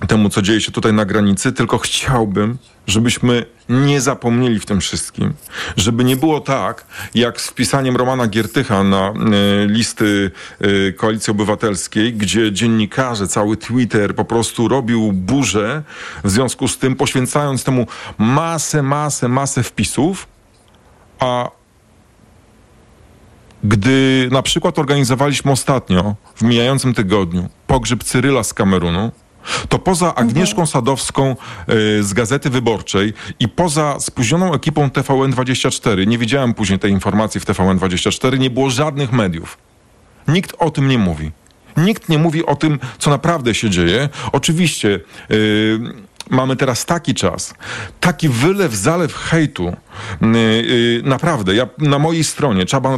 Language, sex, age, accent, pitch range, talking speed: Polish, male, 40-59, native, 105-135 Hz, 125 wpm